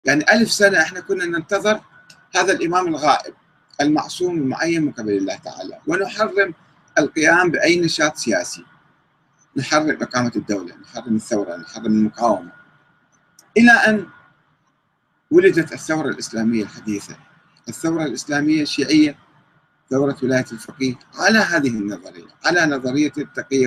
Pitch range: 130-200 Hz